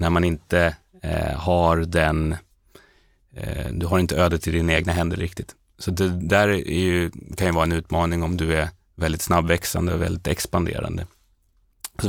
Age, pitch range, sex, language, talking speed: 30-49, 80-90 Hz, male, Swedish, 175 wpm